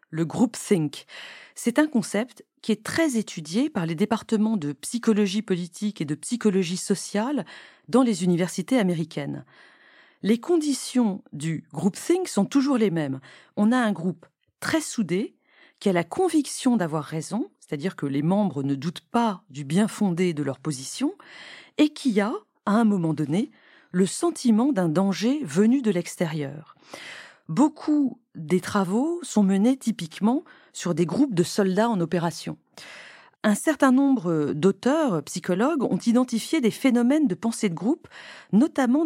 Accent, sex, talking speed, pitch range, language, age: French, female, 155 wpm, 180-260 Hz, French, 40-59